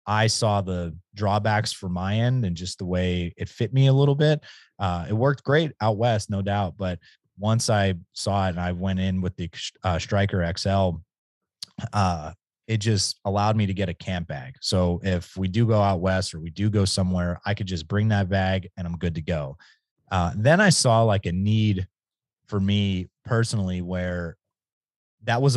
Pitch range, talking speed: 90-110 Hz, 200 wpm